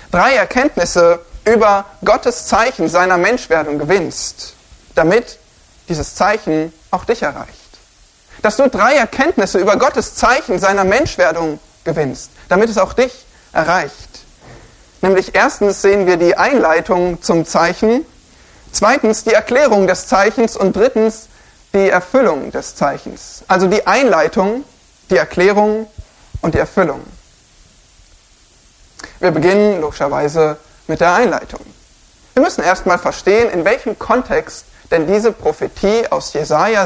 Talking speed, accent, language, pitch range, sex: 120 wpm, German, German, 175-225 Hz, male